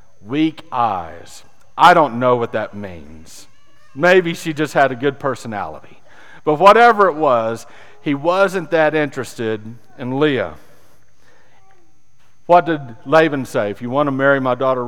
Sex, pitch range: male, 115-155 Hz